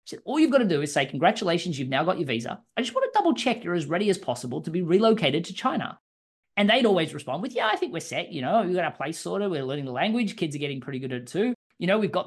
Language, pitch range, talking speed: English, 150-215 Hz, 305 wpm